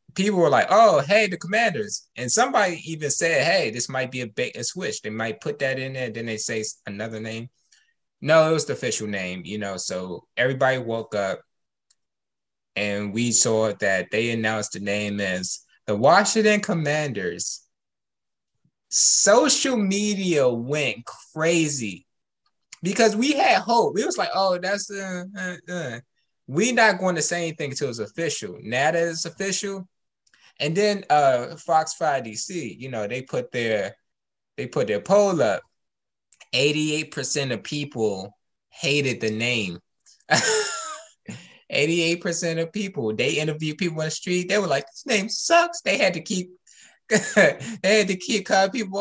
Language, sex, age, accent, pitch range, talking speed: English, male, 20-39, American, 120-195 Hz, 160 wpm